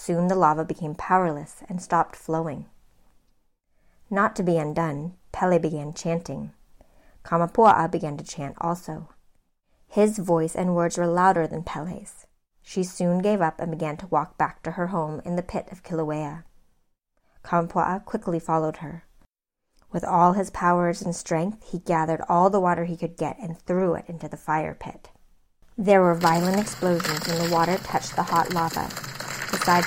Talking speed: 165 wpm